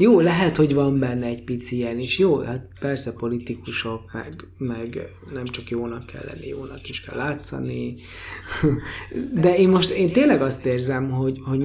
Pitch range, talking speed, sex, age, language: 115-135 Hz, 170 wpm, male, 20-39, Hungarian